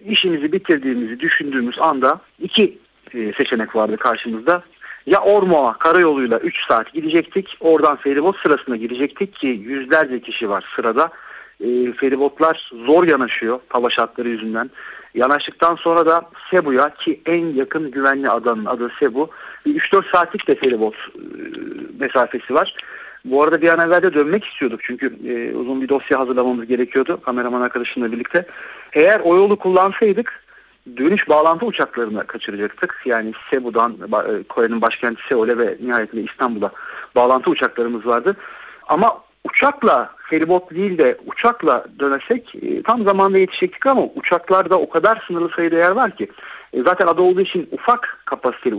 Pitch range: 130-205 Hz